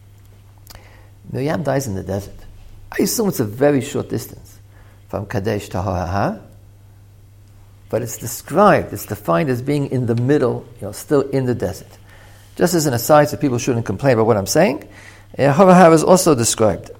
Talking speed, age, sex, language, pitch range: 170 wpm, 50-69, male, English, 100-145 Hz